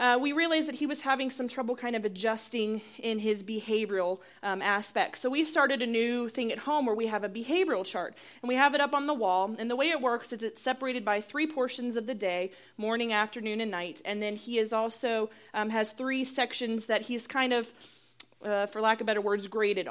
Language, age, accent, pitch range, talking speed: English, 30-49, American, 210-255 Hz, 230 wpm